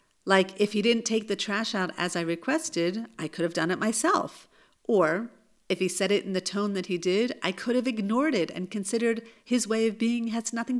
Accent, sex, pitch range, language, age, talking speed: American, female, 170-220 Hz, English, 50-69, 230 wpm